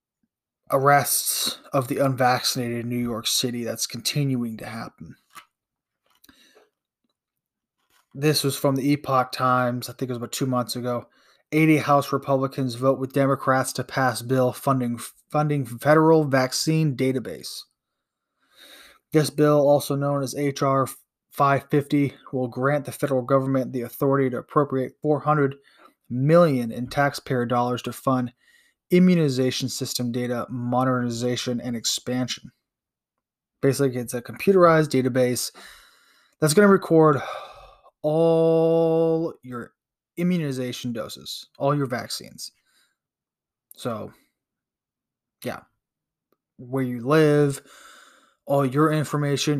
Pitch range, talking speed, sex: 125-145 Hz, 115 wpm, male